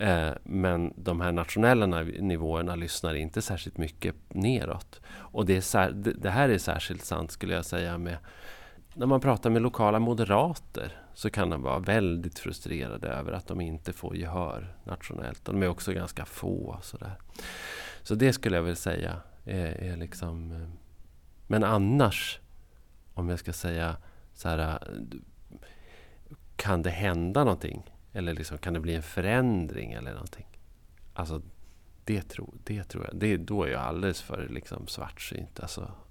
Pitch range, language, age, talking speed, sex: 80-95 Hz, Swedish, 30-49, 145 wpm, male